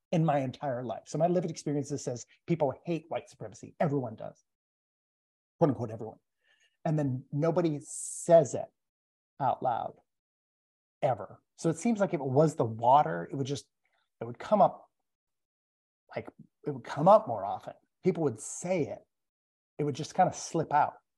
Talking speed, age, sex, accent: 170 wpm, 30-49, male, American